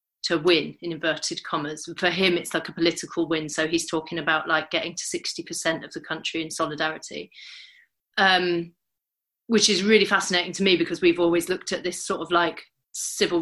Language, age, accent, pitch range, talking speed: English, 30-49, British, 165-190 Hz, 190 wpm